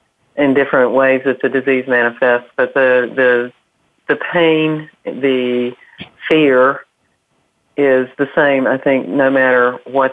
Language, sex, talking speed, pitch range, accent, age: English, female, 130 wpm, 125-140 Hz, American, 40-59